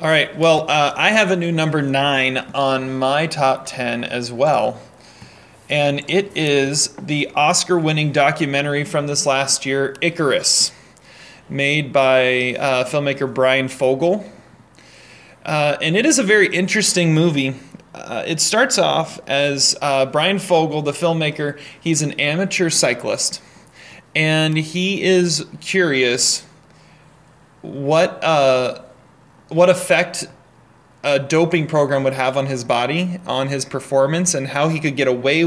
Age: 30-49